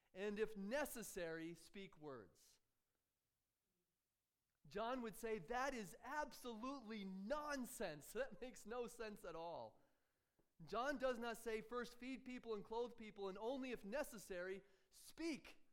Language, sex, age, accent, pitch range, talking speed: English, male, 30-49, American, 160-230 Hz, 125 wpm